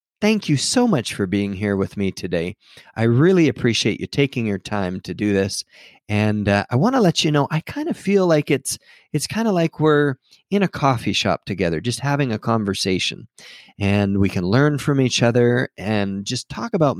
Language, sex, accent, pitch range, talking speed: English, male, American, 100-150 Hz, 210 wpm